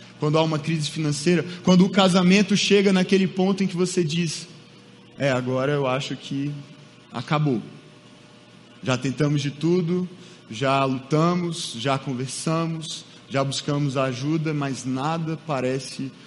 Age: 20-39